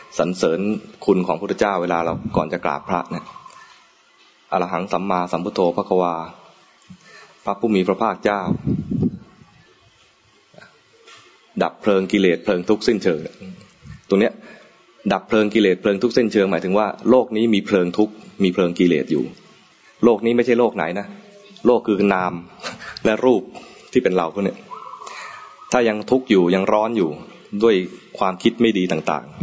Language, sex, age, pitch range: English, male, 20-39, 90-115 Hz